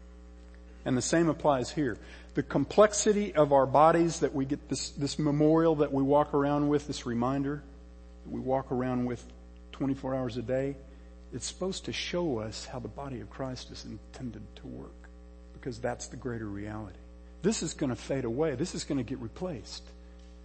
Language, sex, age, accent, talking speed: English, male, 50-69, American, 185 wpm